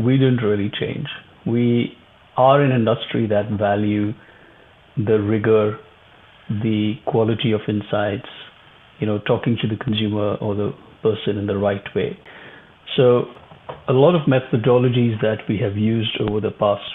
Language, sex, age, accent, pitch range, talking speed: English, male, 50-69, Indian, 105-130 Hz, 145 wpm